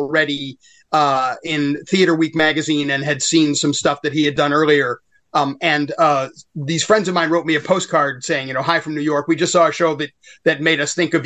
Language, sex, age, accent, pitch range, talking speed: English, male, 30-49, American, 145-170 Hz, 240 wpm